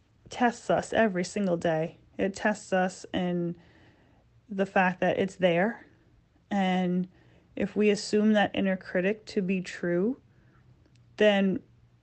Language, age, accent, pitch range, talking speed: English, 30-49, American, 175-205 Hz, 125 wpm